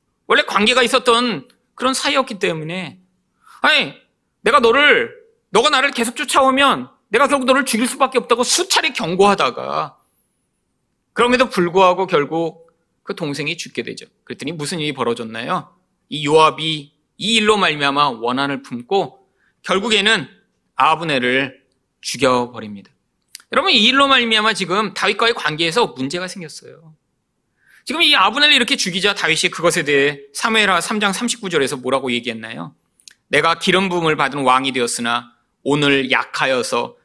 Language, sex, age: Korean, male, 30-49